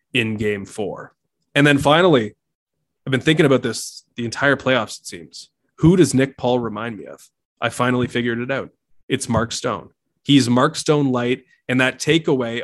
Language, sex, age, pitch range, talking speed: English, male, 20-39, 115-135 Hz, 180 wpm